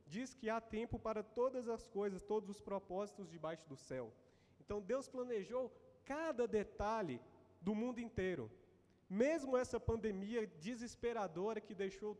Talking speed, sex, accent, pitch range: 140 wpm, male, Brazilian, 160-220 Hz